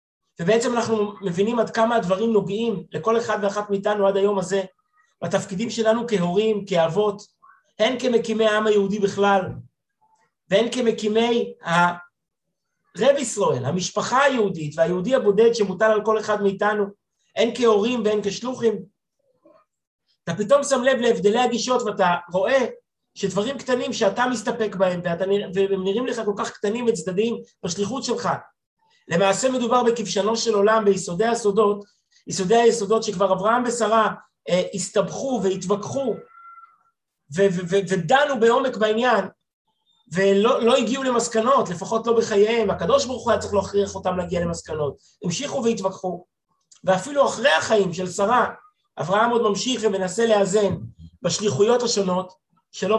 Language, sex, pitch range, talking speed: Hebrew, male, 195-235 Hz, 130 wpm